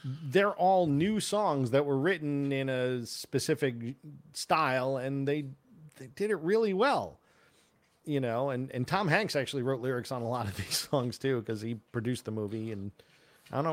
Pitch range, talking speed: 115-145 Hz, 185 wpm